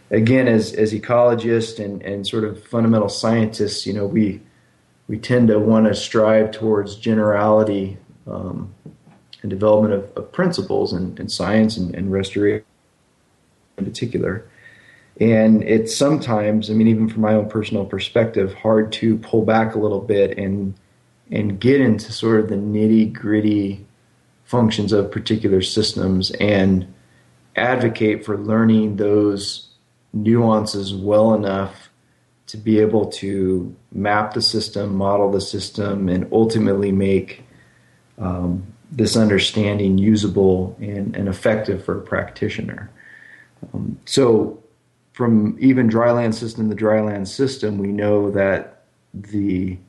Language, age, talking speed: English, 30-49, 130 wpm